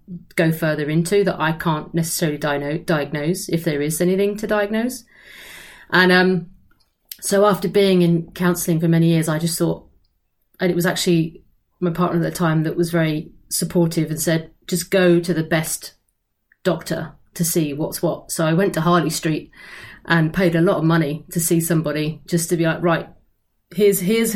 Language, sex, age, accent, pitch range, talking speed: English, female, 30-49, British, 165-195 Hz, 180 wpm